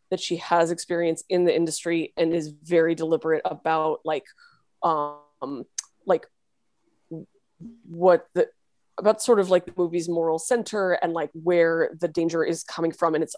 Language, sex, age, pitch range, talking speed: English, female, 20-39, 160-180 Hz, 155 wpm